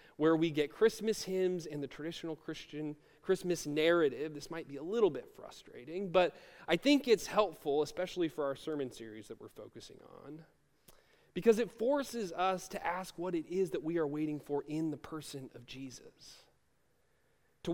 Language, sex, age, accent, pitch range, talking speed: English, male, 30-49, American, 160-215 Hz, 175 wpm